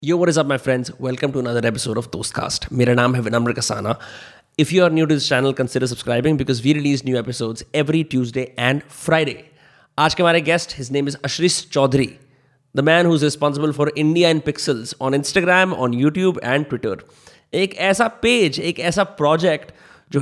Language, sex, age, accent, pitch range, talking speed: Hindi, male, 20-39, native, 135-170 Hz, 195 wpm